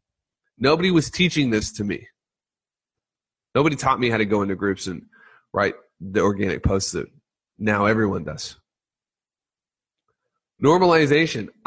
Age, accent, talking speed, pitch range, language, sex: 30-49, American, 125 wpm, 100-125 Hz, English, male